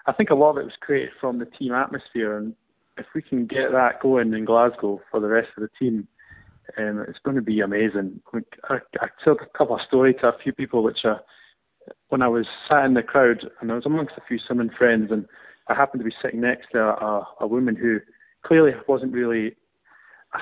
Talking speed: 225 wpm